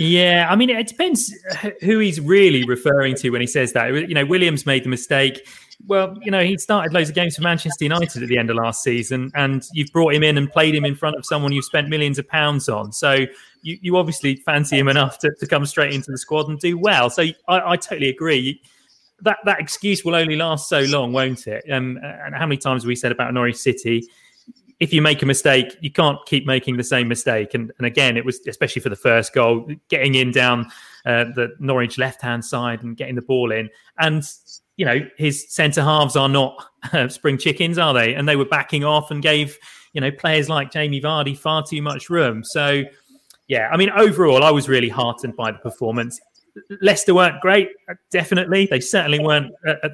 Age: 30-49